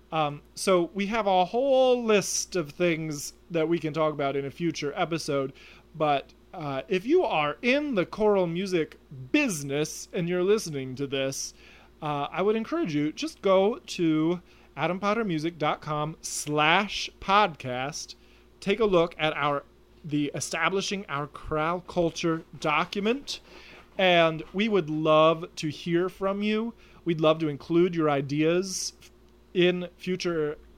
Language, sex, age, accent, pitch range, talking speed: English, male, 30-49, American, 145-180 Hz, 140 wpm